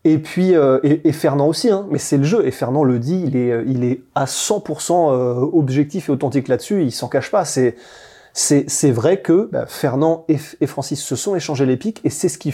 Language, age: French, 20-39